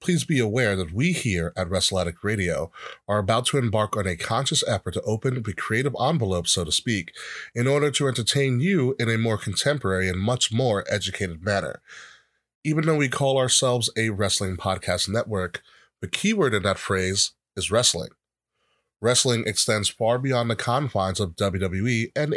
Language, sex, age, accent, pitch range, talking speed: English, male, 30-49, American, 100-125 Hz, 170 wpm